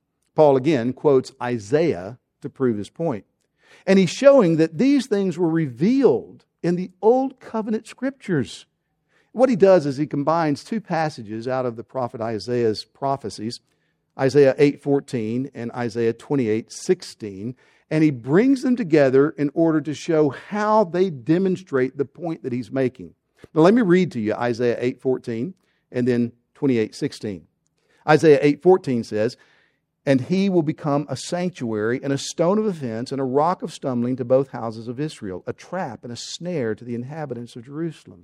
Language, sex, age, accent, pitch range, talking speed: English, male, 50-69, American, 125-180 Hz, 160 wpm